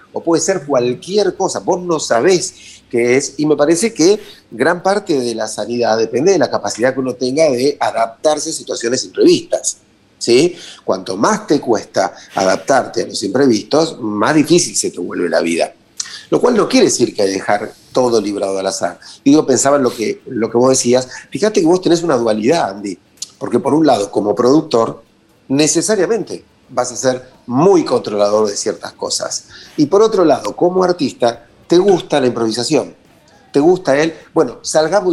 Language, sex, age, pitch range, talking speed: Spanish, male, 40-59, 125-205 Hz, 185 wpm